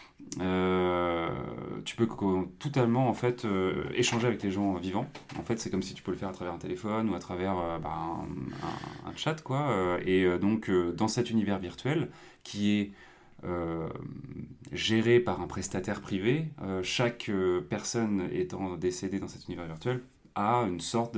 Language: French